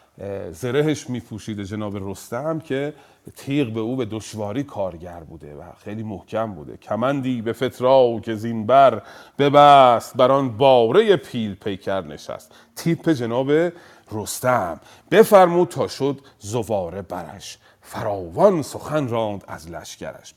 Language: Persian